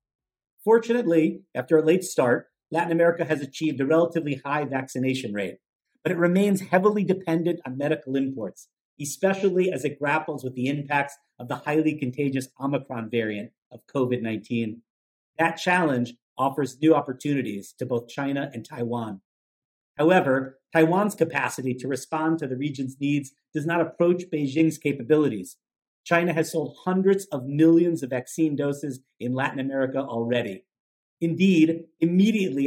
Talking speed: 140 wpm